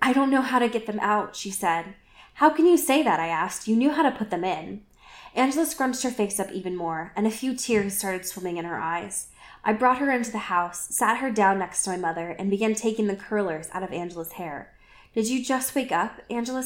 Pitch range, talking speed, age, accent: 180-230 Hz, 245 wpm, 10-29, American